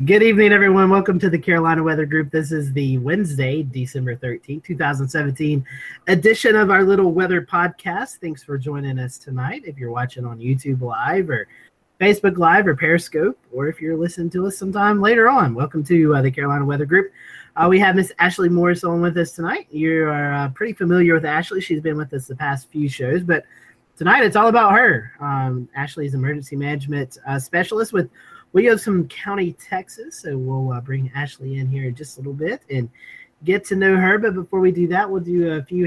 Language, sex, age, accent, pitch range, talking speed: English, male, 30-49, American, 135-190 Hz, 210 wpm